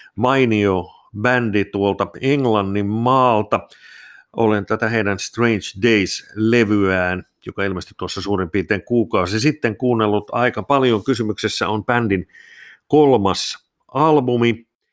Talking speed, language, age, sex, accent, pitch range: 100 wpm, Finnish, 50-69, male, native, 100-120 Hz